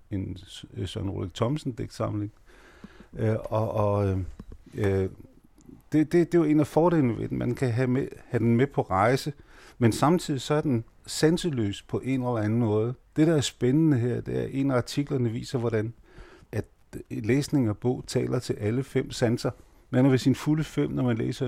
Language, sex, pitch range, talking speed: Danish, male, 110-140 Hz, 185 wpm